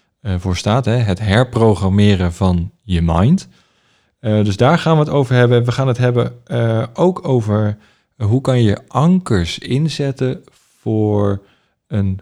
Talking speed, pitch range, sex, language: 135 wpm, 100-120 Hz, male, Dutch